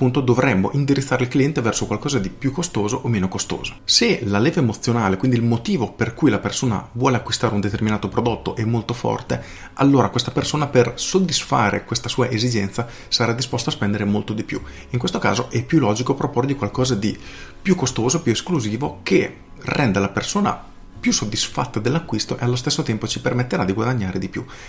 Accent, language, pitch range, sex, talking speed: native, Italian, 110-135 Hz, male, 185 wpm